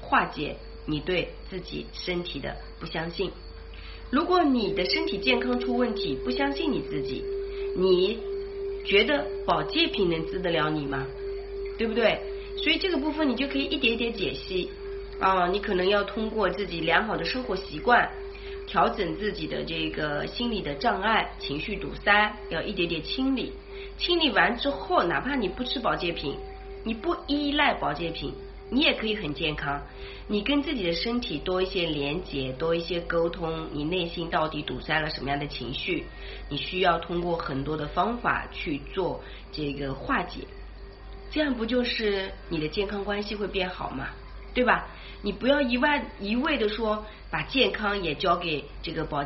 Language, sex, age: Chinese, female, 30-49